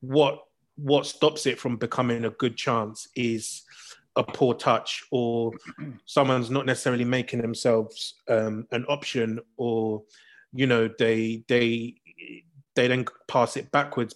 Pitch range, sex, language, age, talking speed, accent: 115-140 Hz, male, English, 30-49, 135 wpm, British